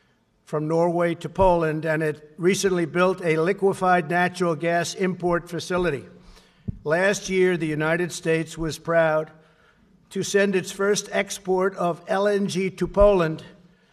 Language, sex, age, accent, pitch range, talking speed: English, male, 50-69, American, 155-180 Hz, 130 wpm